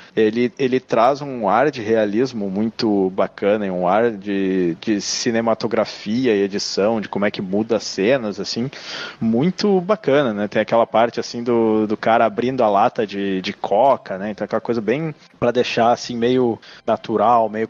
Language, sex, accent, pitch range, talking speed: Portuguese, male, Brazilian, 105-130 Hz, 175 wpm